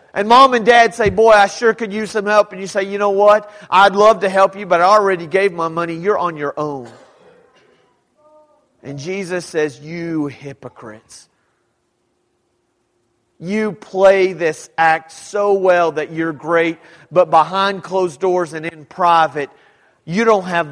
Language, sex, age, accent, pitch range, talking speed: English, male, 40-59, American, 160-260 Hz, 165 wpm